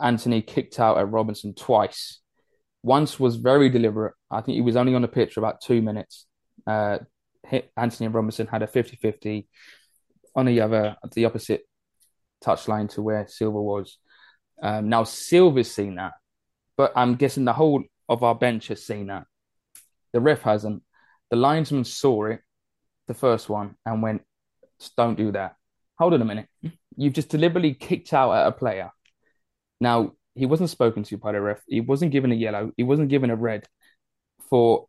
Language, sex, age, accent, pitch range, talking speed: English, male, 20-39, British, 105-125 Hz, 175 wpm